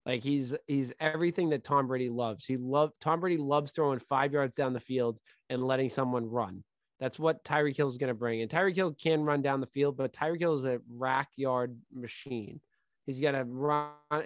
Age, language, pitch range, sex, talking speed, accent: 20-39, English, 120-155 Hz, male, 215 wpm, American